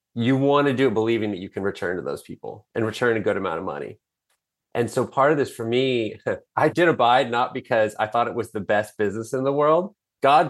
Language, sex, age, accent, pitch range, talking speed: English, male, 30-49, American, 110-135 Hz, 245 wpm